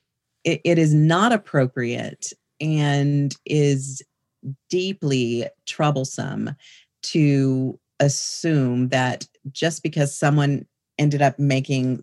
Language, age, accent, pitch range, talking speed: English, 40-59, American, 130-155 Hz, 85 wpm